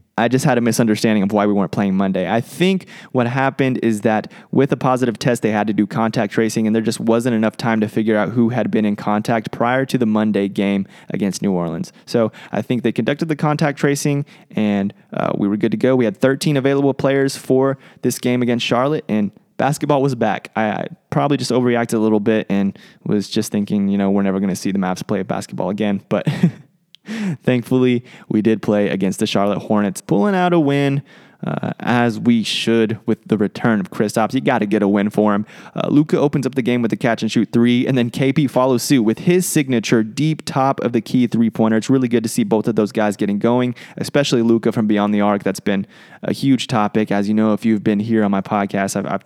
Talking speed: 235 wpm